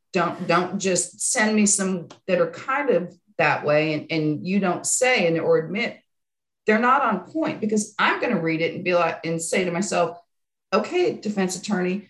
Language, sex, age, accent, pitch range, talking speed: English, female, 50-69, American, 170-230 Hz, 200 wpm